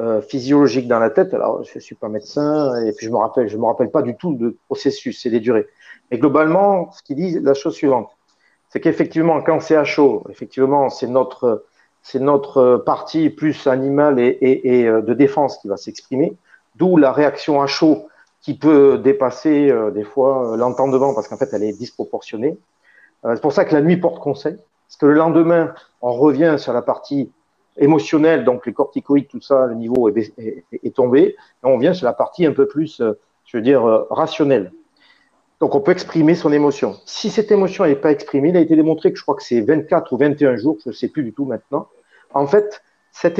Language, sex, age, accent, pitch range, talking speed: French, male, 40-59, French, 130-170 Hz, 205 wpm